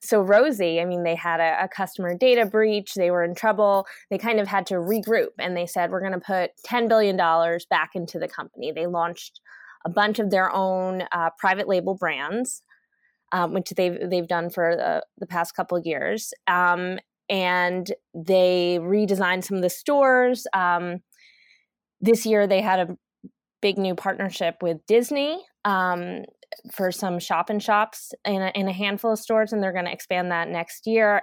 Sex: female